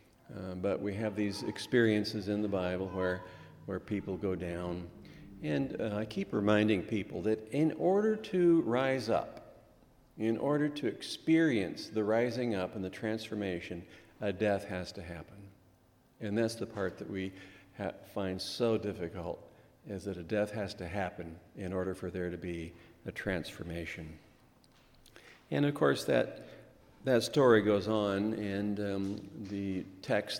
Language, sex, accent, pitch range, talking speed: English, male, American, 90-110 Hz, 155 wpm